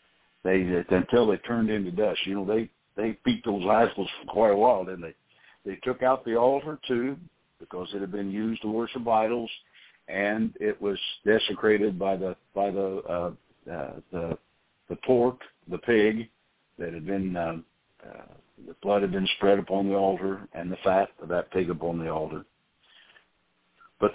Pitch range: 90-115 Hz